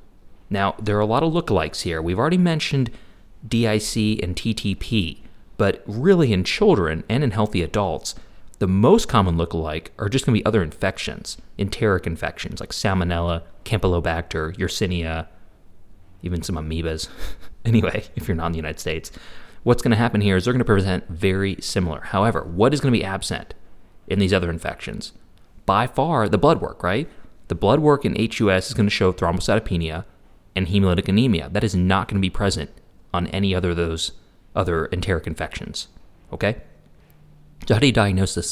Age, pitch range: 30-49, 85-110 Hz